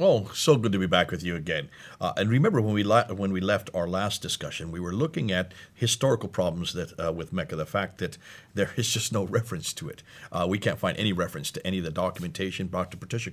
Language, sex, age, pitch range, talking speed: English, male, 50-69, 90-115 Hz, 245 wpm